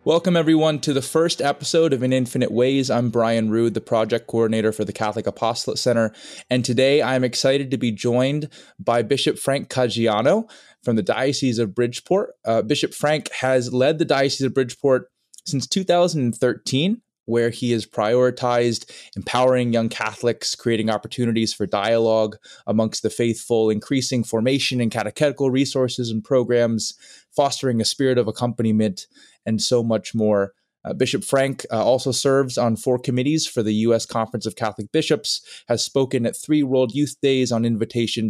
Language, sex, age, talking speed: English, male, 20-39, 165 wpm